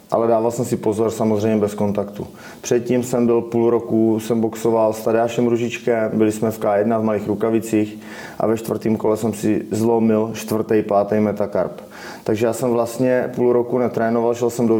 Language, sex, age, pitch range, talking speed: Slovak, male, 30-49, 105-120 Hz, 185 wpm